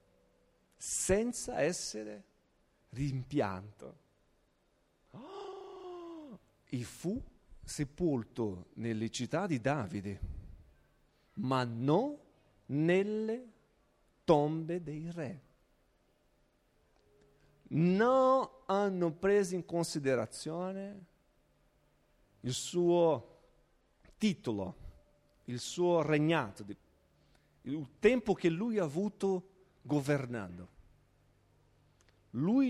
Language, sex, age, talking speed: Italian, male, 50-69, 65 wpm